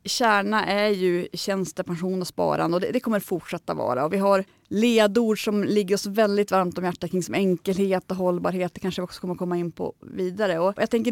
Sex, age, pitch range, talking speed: female, 30-49, 185-220 Hz, 210 wpm